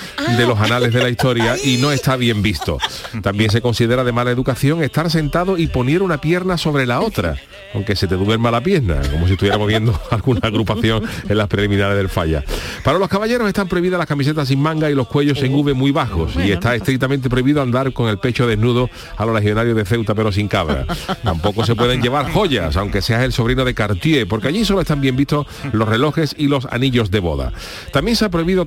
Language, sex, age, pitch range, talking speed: Spanish, male, 40-59, 110-140 Hz, 220 wpm